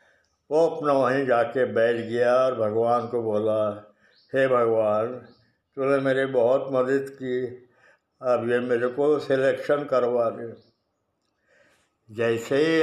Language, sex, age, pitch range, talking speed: Hindi, male, 60-79, 125-155 Hz, 125 wpm